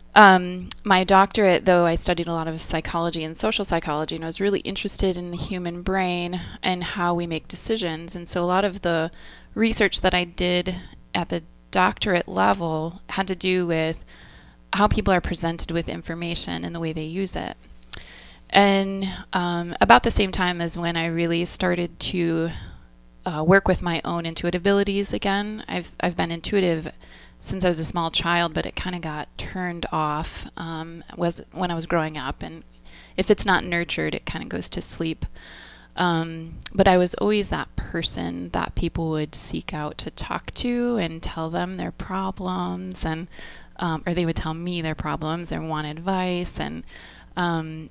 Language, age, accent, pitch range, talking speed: English, 20-39, American, 160-185 Hz, 185 wpm